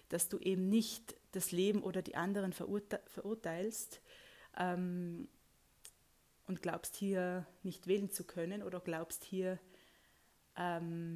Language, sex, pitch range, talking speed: German, female, 170-195 Hz, 125 wpm